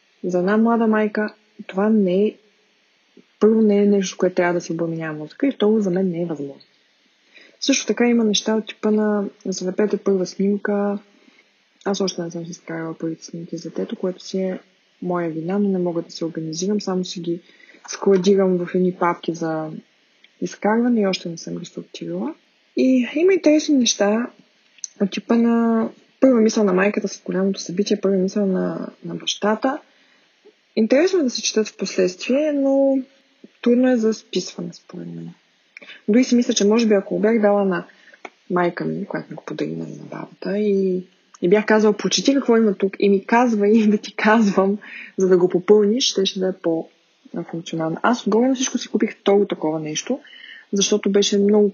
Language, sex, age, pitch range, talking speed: Bulgarian, female, 20-39, 180-220 Hz, 180 wpm